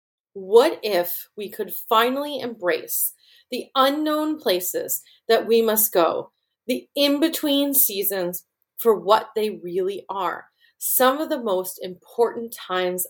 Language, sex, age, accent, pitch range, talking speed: English, female, 30-49, American, 200-265 Hz, 125 wpm